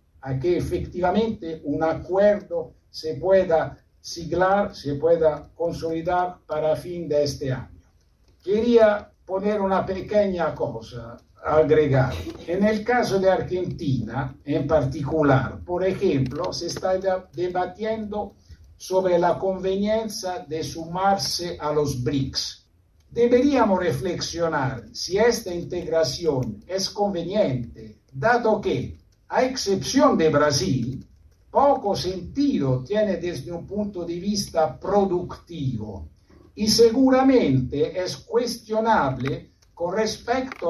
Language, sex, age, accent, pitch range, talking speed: Spanish, male, 60-79, Italian, 145-205 Hz, 105 wpm